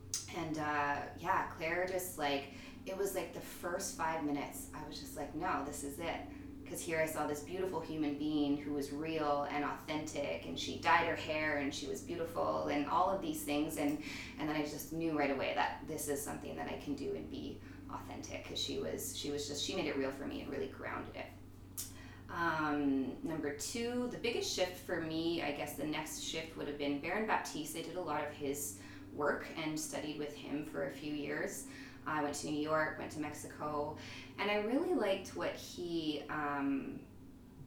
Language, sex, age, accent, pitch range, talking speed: English, female, 20-39, American, 140-155 Hz, 210 wpm